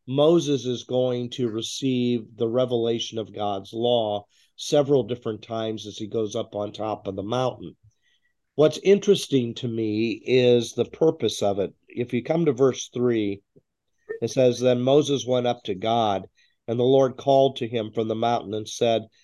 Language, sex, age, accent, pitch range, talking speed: English, male, 50-69, American, 110-130 Hz, 175 wpm